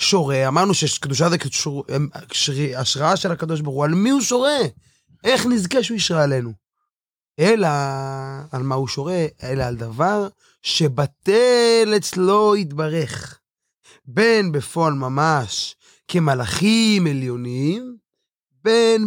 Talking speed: 110 wpm